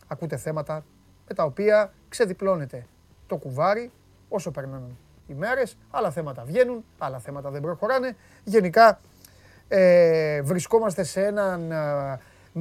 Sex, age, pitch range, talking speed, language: male, 30-49, 155-210 Hz, 120 wpm, Greek